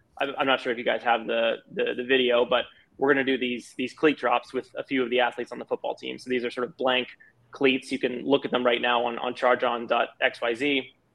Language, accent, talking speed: English, American, 250 wpm